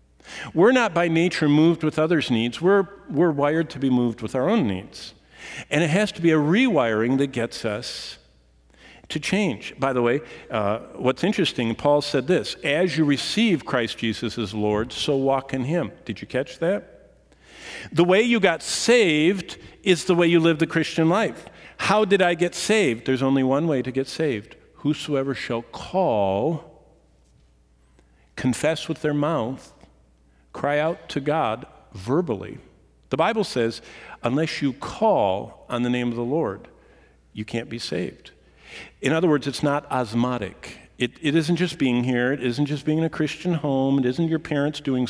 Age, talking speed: 50-69, 175 wpm